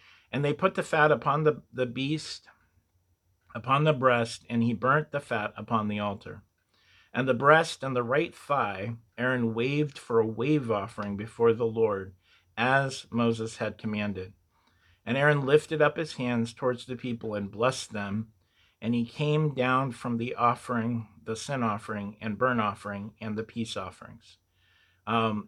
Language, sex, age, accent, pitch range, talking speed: English, male, 40-59, American, 105-130 Hz, 165 wpm